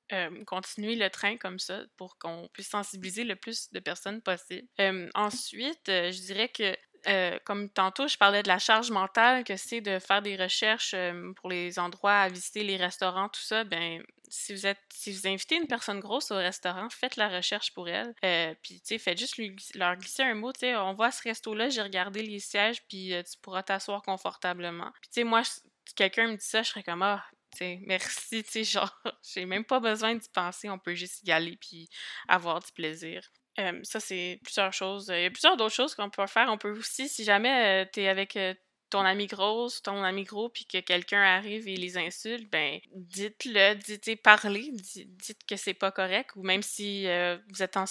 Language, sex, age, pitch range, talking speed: French, female, 20-39, 185-220 Hz, 220 wpm